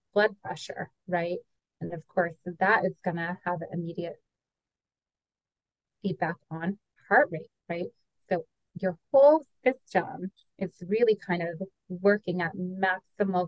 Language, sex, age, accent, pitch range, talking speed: English, female, 30-49, American, 175-195 Hz, 125 wpm